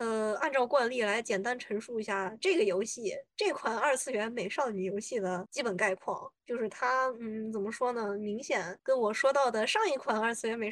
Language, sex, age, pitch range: Chinese, female, 20-39, 200-250 Hz